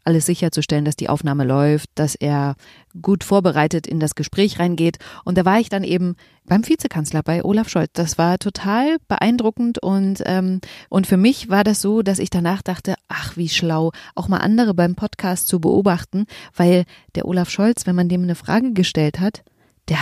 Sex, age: female, 30-49